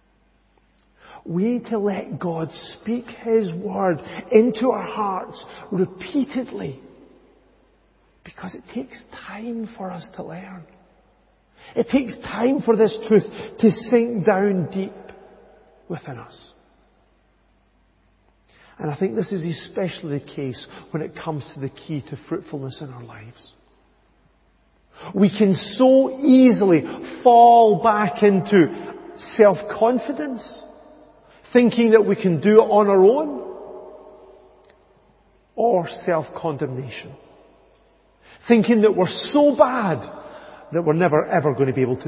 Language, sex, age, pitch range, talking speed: English, male, 50-69, 145-225 Hz, 120 wpm